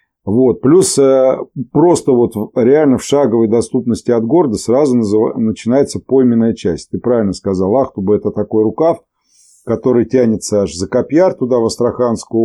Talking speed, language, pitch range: 145 wpm, Russian, 100-125 Hz